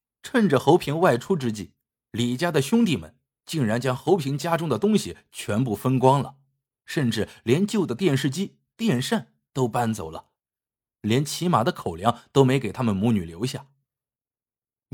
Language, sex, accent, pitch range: Chinese, male, native, 110-150 Hz